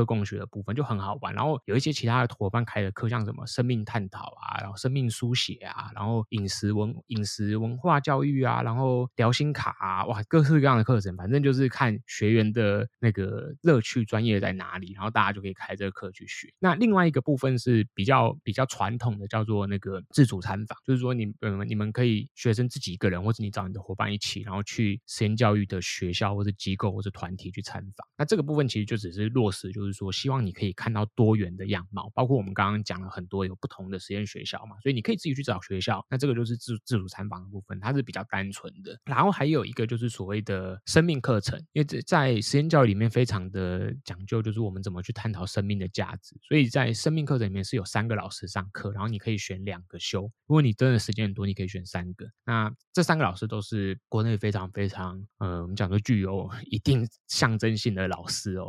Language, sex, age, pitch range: Chinese, male, 20-39, 100-125 Hz